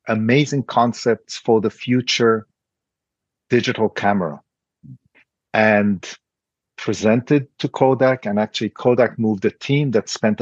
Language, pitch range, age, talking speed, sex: English, 110-140 Hz, 50-69, 110 wpm, male